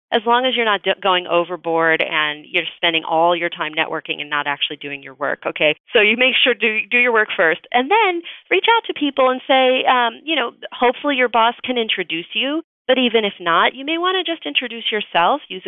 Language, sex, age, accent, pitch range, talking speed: English, female, 30-49, American, 170-225 Hz, 225 wpm